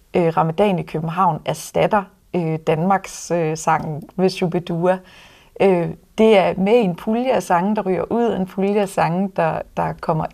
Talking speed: 155 wpm